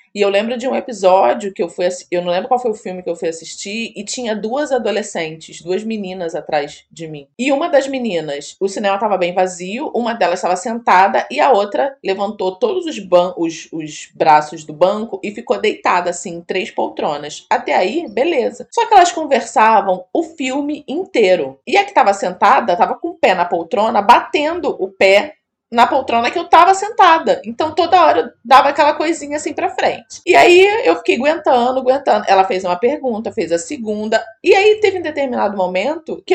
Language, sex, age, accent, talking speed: Portuguese, female, 20-39, Brazilian, 200 wpm